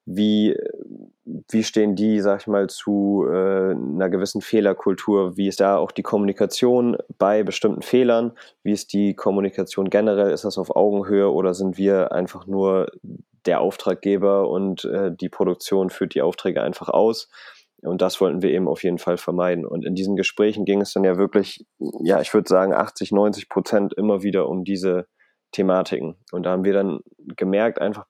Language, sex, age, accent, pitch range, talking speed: German, male, 20-39, German, 90-105 Hz, 175 wpm